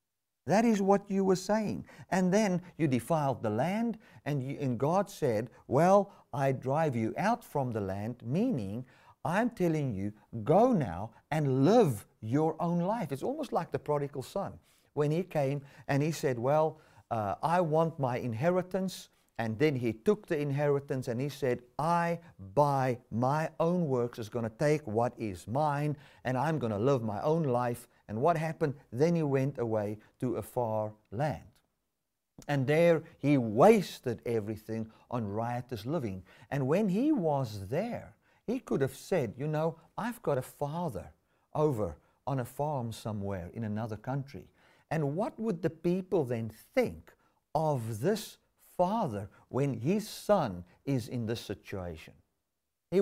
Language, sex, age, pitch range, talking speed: English, male, 50-69, 115-165 Hz, 160 wpm